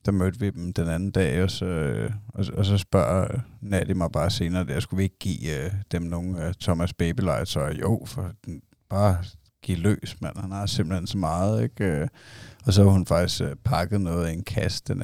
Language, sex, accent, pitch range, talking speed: Danish, male, native, 90-110 Hz, 210 wpm